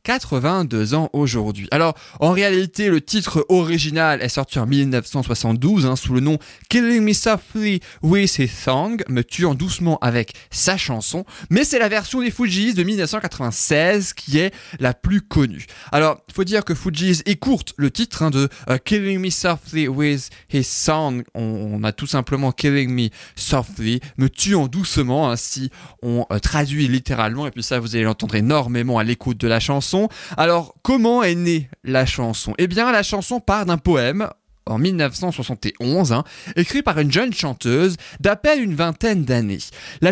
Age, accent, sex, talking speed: 20-39, French, male, 175 wpm